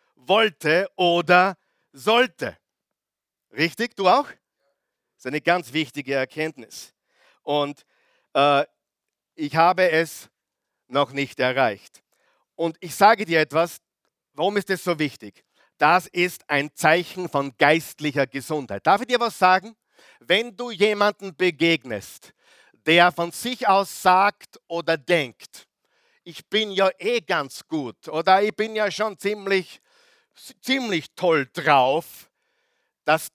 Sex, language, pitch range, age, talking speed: male, German, 160-220 Hz, 50-69, 125 wpm